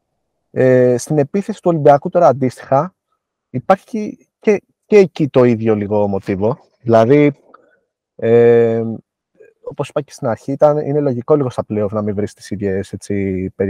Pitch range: 105-145 Hz